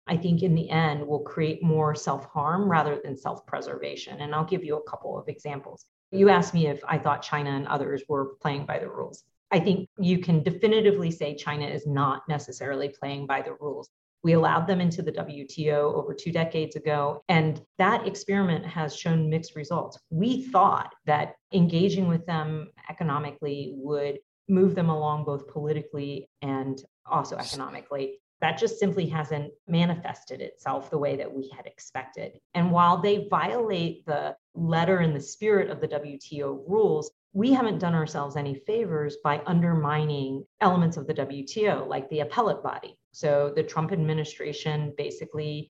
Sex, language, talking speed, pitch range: female, English, 165 wpm, 145-175 Hz